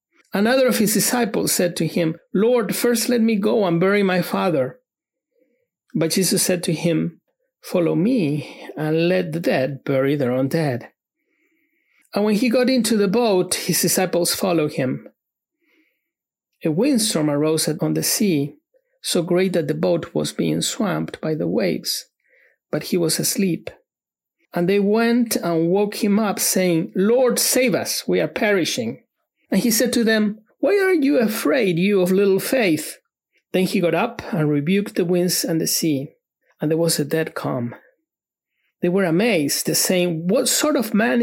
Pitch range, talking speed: 165-235 Hz, 165 wpm